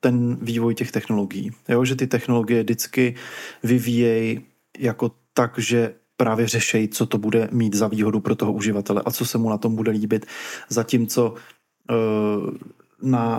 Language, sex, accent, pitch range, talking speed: Czech, male, native, 115-125 Hz, 150 wpm